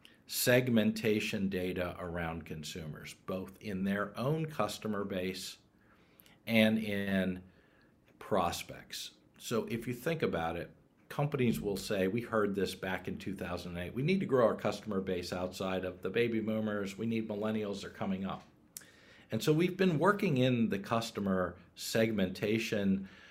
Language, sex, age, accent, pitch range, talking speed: English, male, 50-69, American, 95-115 Hz, 140 wpm